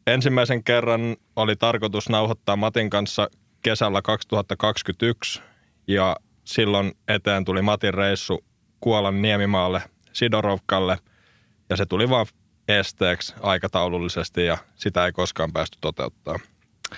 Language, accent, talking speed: Finnish, native, 105 wpm